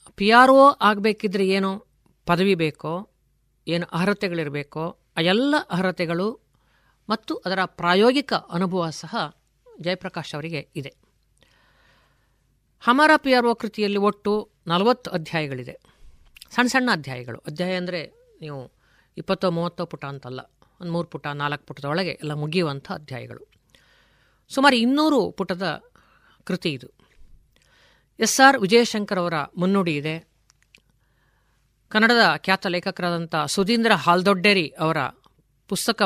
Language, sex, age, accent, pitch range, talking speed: Kannada, female, 50-69, native, 160-210 Hz, 105 wpm